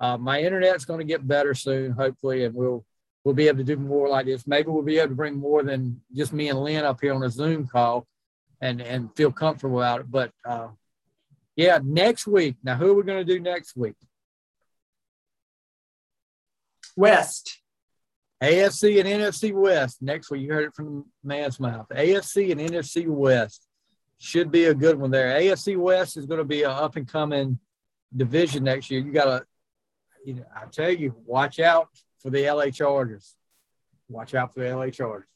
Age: 40-59